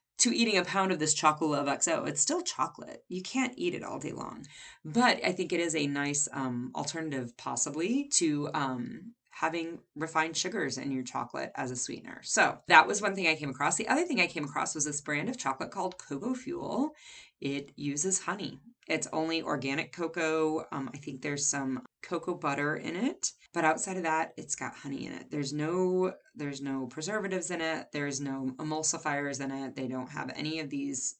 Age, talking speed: 30-49, 200 wpm